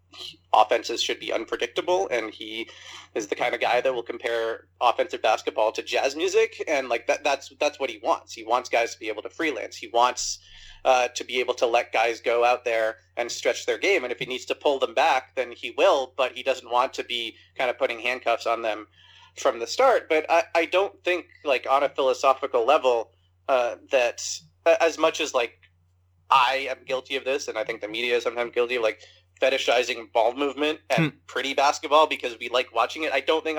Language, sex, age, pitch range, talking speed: English, male, 30-49, 110-165 Hz, 215 wpm